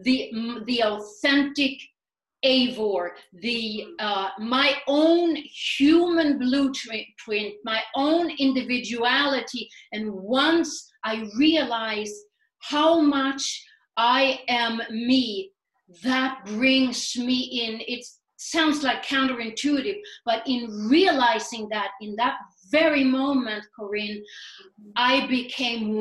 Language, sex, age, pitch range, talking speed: English, female, 40-59, 220-265 Hz, 95 wpm